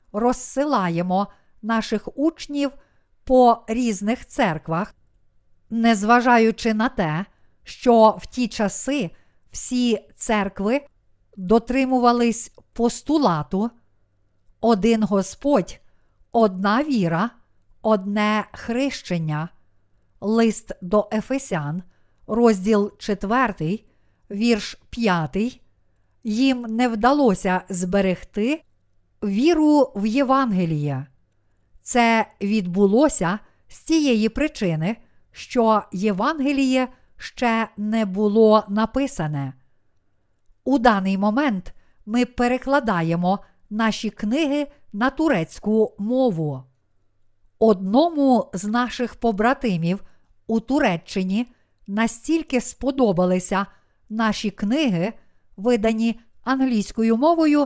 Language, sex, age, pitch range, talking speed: Ukrainian, female, 50-69, 195-245 Hz, 75 wpm